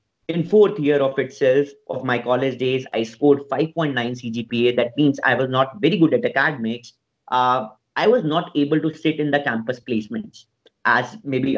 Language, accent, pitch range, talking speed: Hindi, native, 125-155 Hz, 180 wpm